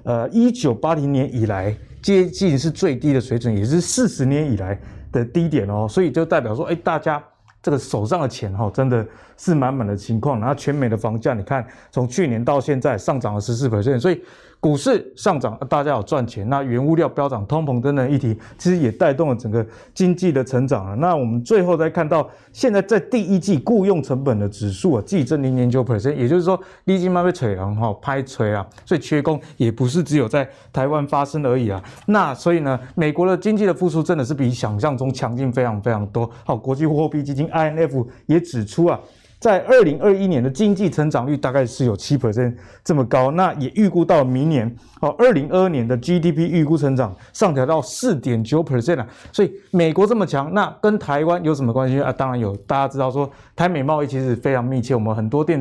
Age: 20-39